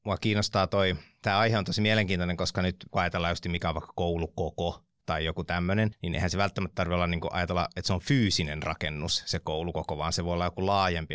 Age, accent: 30-49, native